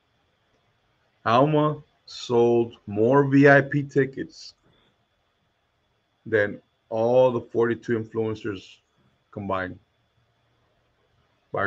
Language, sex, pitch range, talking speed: English, male, 100-120 Hz, 60 wpm